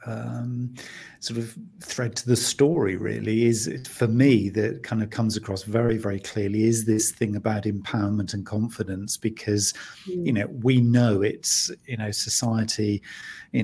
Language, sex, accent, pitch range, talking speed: English, male, British, 105-115 Hz, 165 wpm